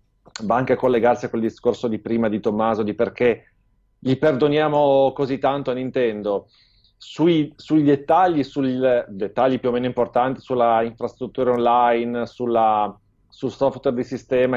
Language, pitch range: Italian, 110-135 Hz